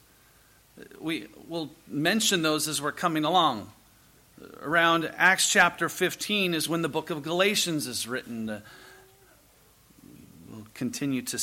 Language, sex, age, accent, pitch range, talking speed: English, male, 40-59, American, 140-200 Hz, 120 wpm